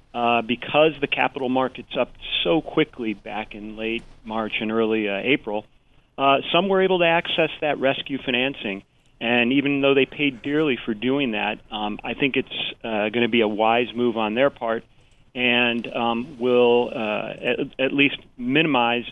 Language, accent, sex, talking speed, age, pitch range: English, American, male, 175 wpm, 40-59, 110-130 Hz